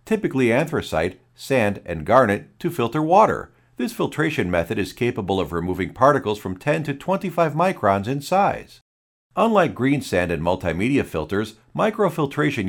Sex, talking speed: male, 140 wpm